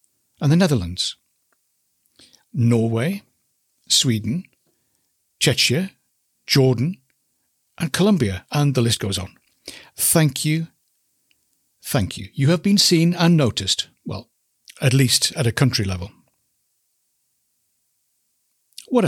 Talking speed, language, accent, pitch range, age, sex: 100 wpm, English, British, 105-145 Hz, 60-79, male